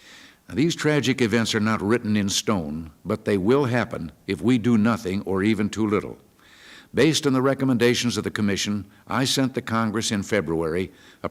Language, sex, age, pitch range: English, male, 60-79, 105-125 Hz